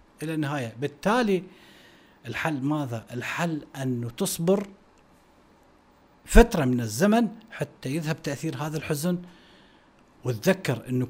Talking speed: 95 wpm